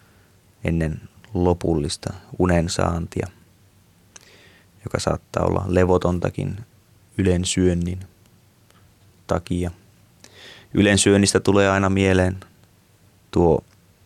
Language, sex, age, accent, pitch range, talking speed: Finnish, male, 30-49, native, 85-100 Hz, 60 wpm